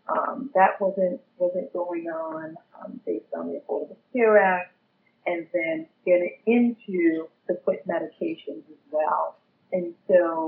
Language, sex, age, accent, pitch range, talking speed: English, female, 40-59, American, 170-220 Hz, 135 wpm